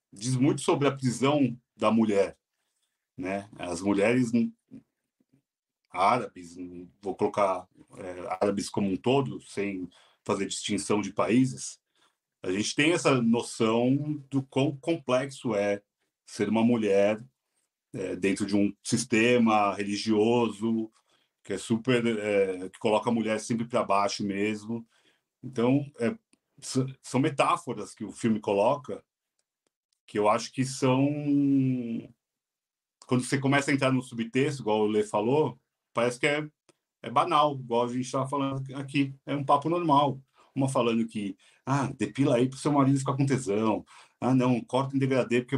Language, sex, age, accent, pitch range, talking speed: Portuguese, male, 40-59, Brazilian, 110-135 Hz, 145 wpm